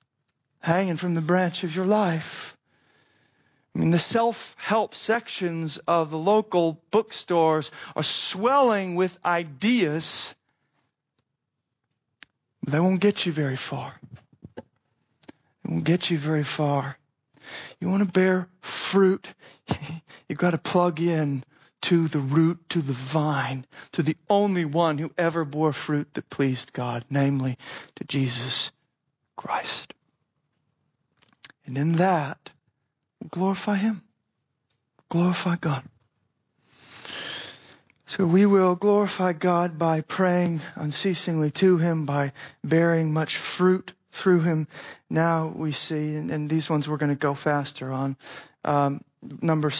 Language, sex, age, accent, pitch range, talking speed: English, male, 40-59, American, 145-180 Hz, 125 wpm